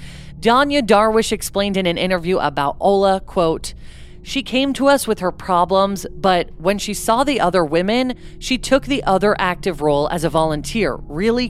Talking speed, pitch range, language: 170 wpm, 165-225 Hz, English